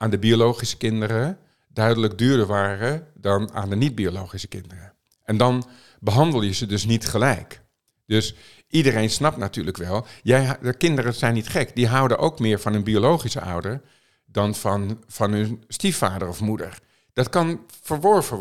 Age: 50-69